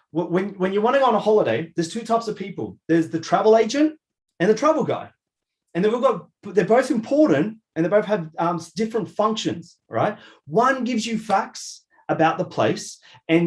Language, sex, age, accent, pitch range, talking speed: English, male, 30-49, Australian, 165-230 Hz, 185 wpm